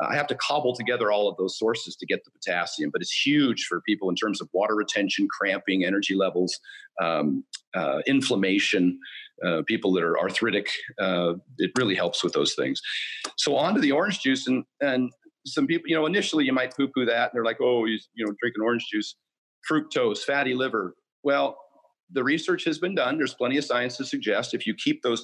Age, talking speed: 40-59, 210 wpm